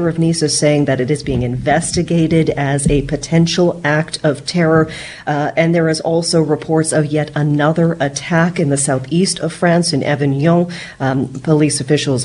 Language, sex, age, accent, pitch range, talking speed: English, female, 40-59, American, 140-165 Hz, 170 wpm